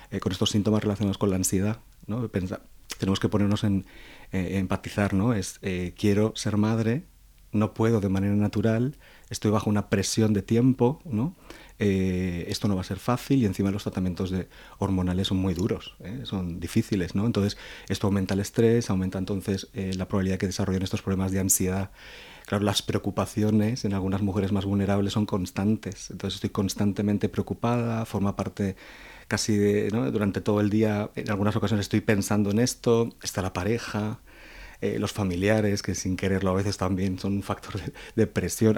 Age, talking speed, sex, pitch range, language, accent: 30-49, 185 wpm, male, 95-110 Hz, Spanish, Spanish